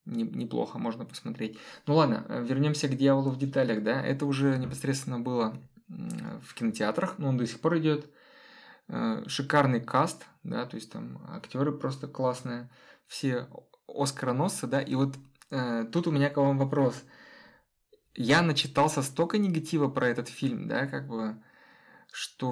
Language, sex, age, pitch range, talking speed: Russian, male, 20-39, 125-150 Hz, 145 wpm